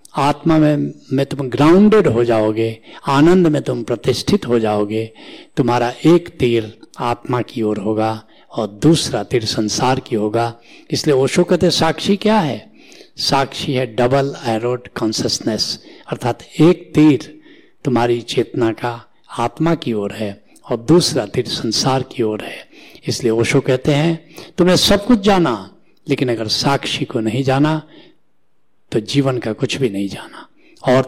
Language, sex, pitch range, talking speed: Hindi, male, 115-165 Hz, 145 wpm